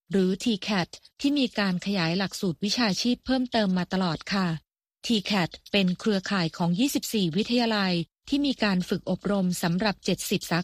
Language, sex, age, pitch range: Thai, female, 20-39, 185-230 Hz